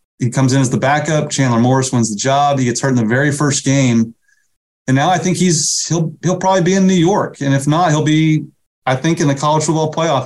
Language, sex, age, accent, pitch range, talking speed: English, male, 30-49, American, 125-160 Hz, 250 wpm